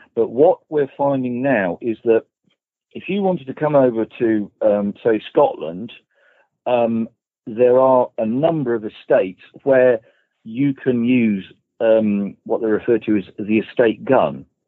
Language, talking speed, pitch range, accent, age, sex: English, 150 wpm, 100-125 Hz, British, 40-59, male